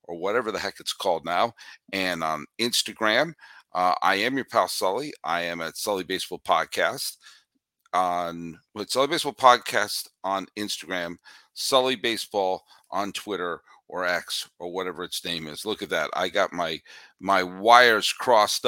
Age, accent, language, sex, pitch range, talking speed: 50-69, American, English, male, 95-125 Hz, 155 wpm